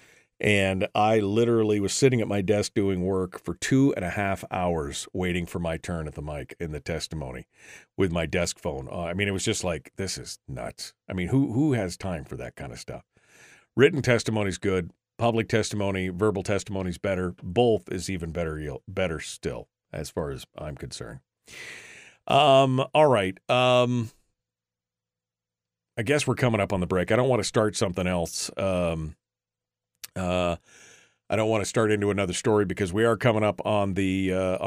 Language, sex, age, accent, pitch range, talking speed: English, male, 40-59, American, 90-115 Hz, 190 wpm